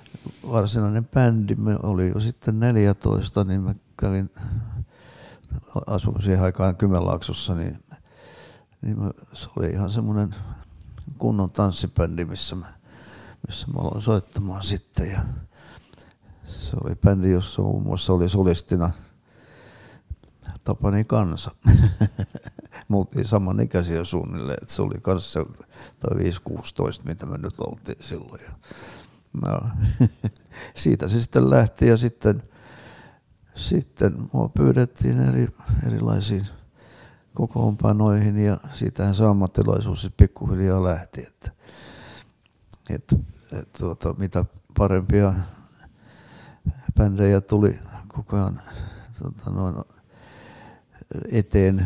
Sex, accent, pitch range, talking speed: male, native, 95-110 Hz, 95 wpm